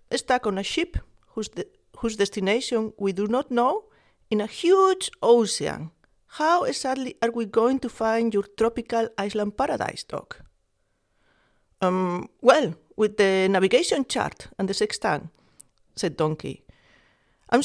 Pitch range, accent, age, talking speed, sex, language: 190-245 Hz, Spanish, 40-59, 135 wpm, female, English